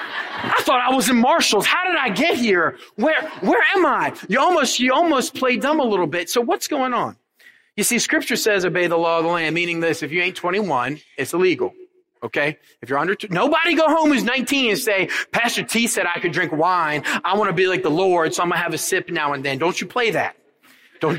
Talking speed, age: 240 wpm, 30-49